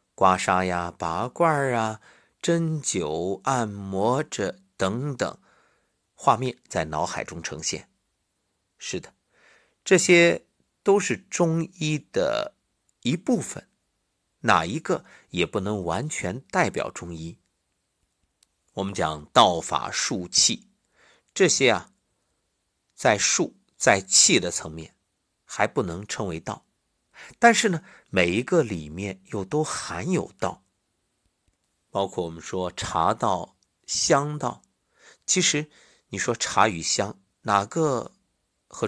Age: 50-69